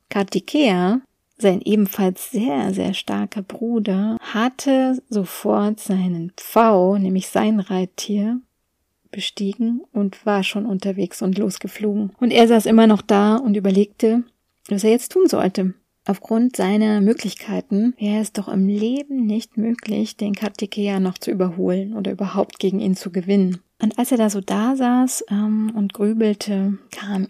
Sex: female